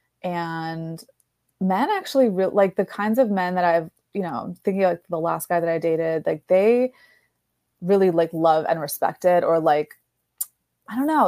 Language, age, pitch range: English, 20-39, 165-195 Hz